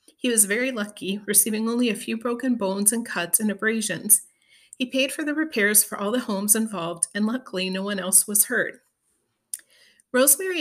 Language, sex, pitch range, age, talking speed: English, female, 195-240 Hz, 40-59, 180 wpm